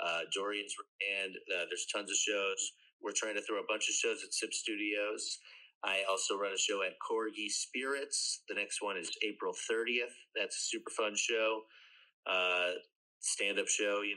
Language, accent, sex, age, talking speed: English, American, male, 30-49, 180 wpm